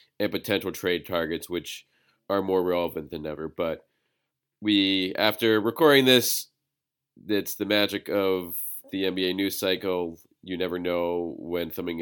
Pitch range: 90-105 Hz